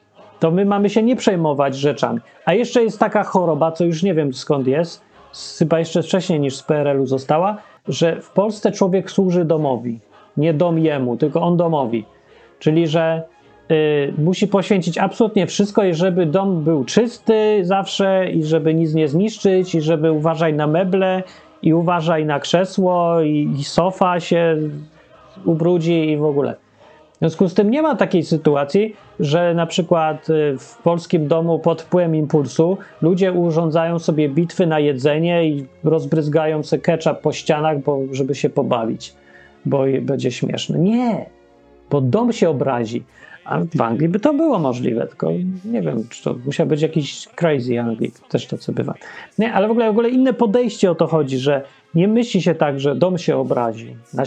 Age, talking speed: 30-49, 170 wpm